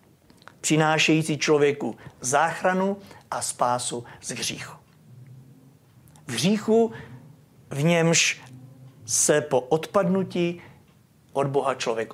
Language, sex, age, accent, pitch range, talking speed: Czech, male, 50-69, native, 135-195 Hz, 85 wpm